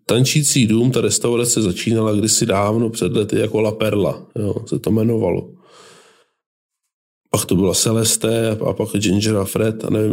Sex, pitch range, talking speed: male, 110-130 Hz, 160 wpm